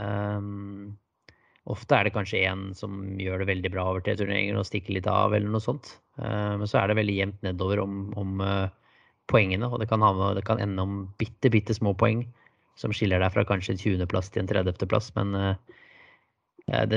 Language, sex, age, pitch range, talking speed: English, male, 20-39, 95-110 Hz, 210 wpm